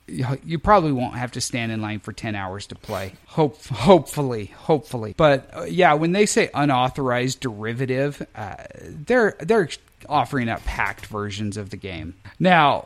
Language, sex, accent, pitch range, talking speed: English, male, American, 115-145 Hz, 165 wpm